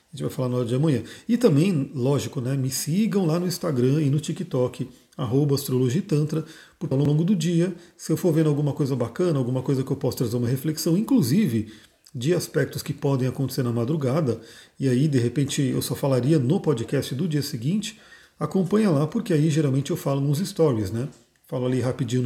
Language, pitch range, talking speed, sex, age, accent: Portuguese, 130-160 Hz, 210 wpm, male, 40-59, Brazilian